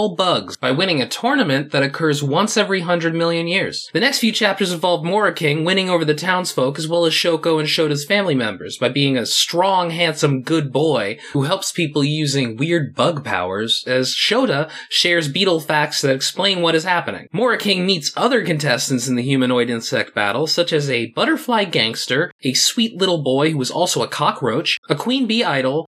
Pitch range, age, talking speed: 135-190 Hz, 20-39, 190 wpm